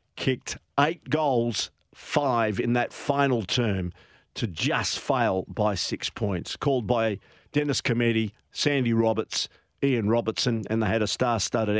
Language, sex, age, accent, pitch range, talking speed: English, male, 50-69, Australian, 110-155 Hz, 135 wpm